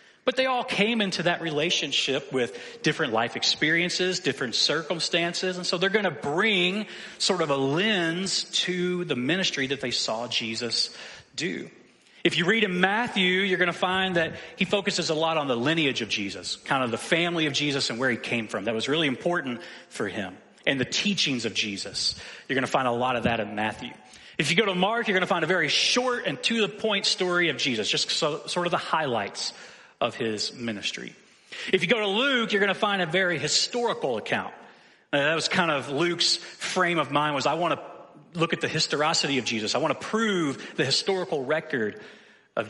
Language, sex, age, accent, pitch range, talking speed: English, male, 30-49, American, 135-195 Hz, 200 wpm